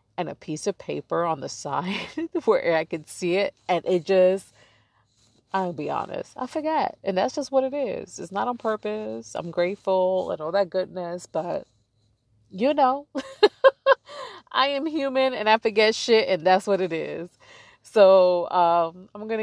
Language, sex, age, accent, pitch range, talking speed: English, female, 30-49, American, 150-200 Hz, 175 wpm